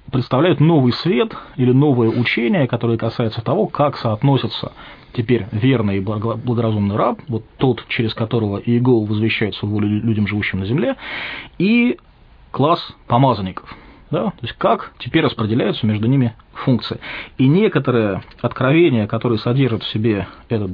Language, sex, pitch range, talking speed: English, male, 115-135 Hz, 130 wpm